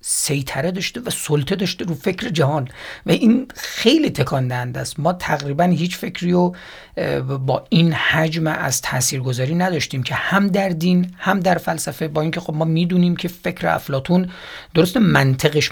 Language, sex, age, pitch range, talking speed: Persian, male, 40-59, 135-180 Hz, 160 wpm